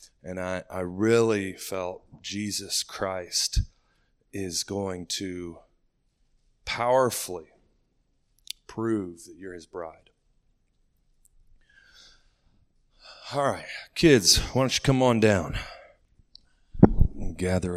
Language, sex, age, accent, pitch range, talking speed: English, male, 40-59, American, 85-110 Hz, 90 wpm